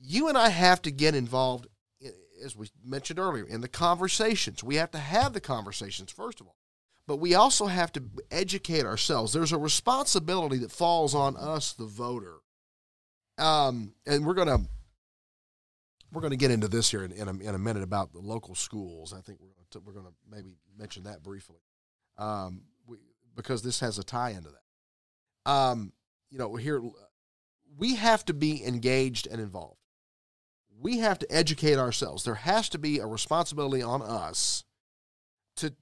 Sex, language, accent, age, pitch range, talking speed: male, English, American, 40-59, 110-160 Hz, 175 wpm